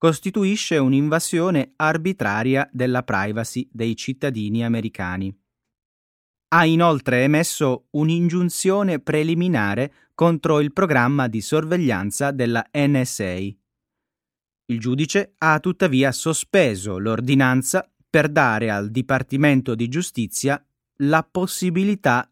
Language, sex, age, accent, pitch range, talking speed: Italian, male, 30-49, native, 115-155 Hz, 90 wpm